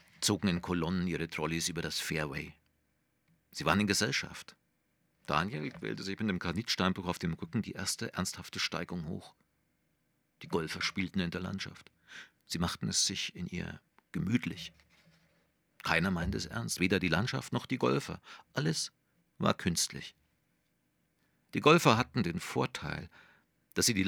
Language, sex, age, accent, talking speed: German, male, 50-69, German, 150 wpm